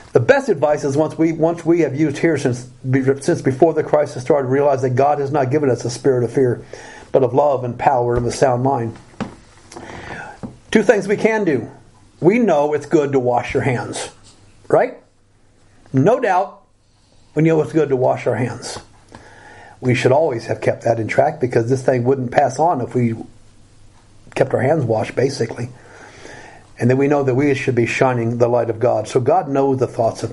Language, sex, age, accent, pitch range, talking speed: English, male, 50-69, American, 115-145 Hz, 200 wpm